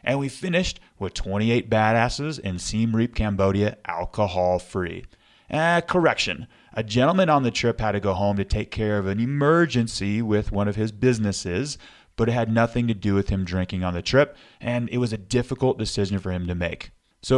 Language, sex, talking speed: English, male, 190 wpm